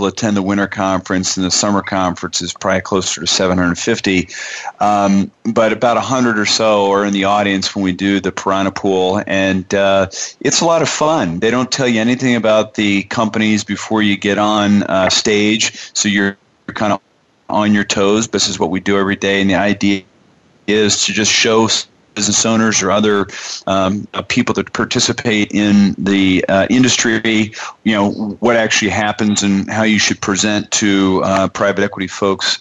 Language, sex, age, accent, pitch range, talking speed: English, male, 40-59, American, 95-110 Hz, 180 wpm